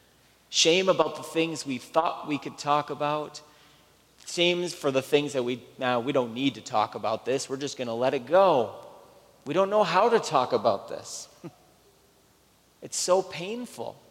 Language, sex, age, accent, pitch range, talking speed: English, male, 30-49, American, 130-170 Hz, 185 wpm